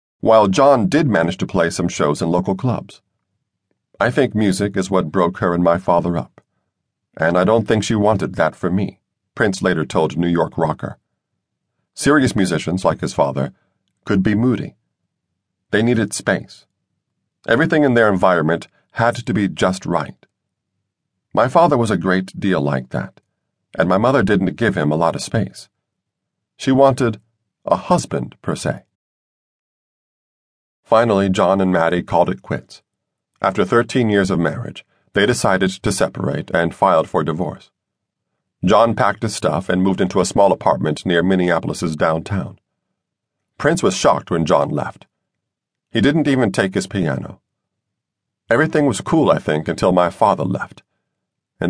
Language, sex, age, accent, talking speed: English, male, 50-69, American, 160 wpm